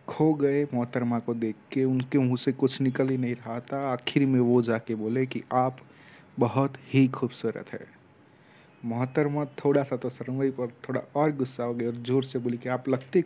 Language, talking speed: Hindi, 195 wpm